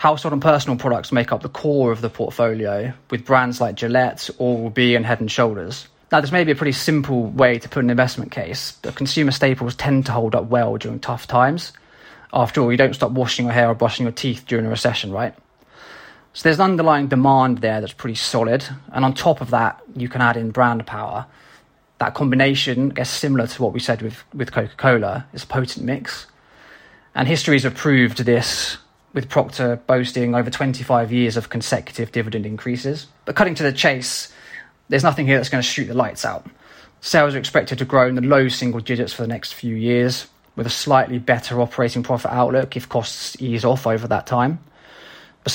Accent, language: British, English